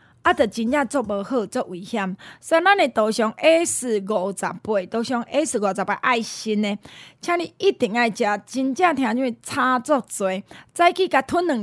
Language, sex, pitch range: Chinese, female, 215-290 Hz